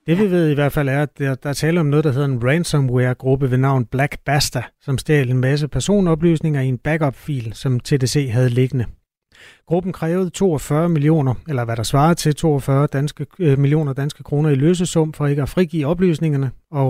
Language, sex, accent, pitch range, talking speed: Danish, male, native, 130-155 Hz, 200 wpm